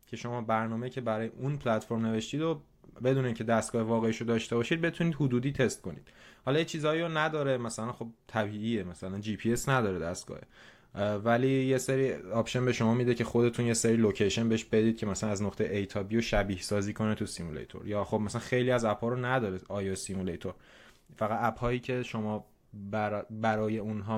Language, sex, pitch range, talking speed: Persian, male, 105-125 Hz, 185 wpm